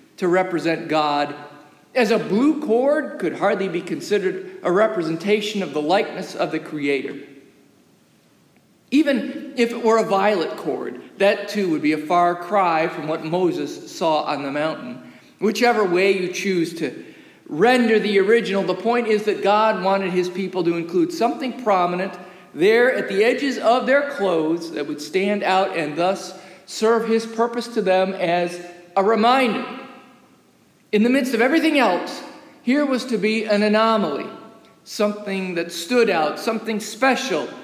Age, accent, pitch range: 50-69, American, 175-250 Hz